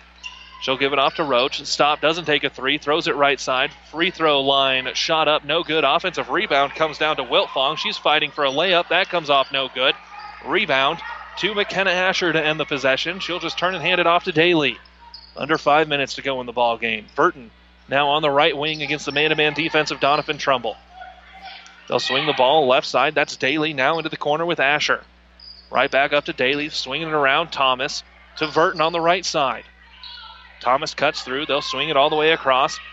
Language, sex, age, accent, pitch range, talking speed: English, male, 30-49, American, 140-170 Hz, 215 wpm